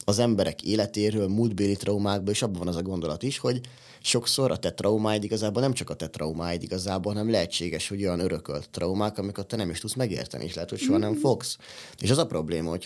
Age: 20-39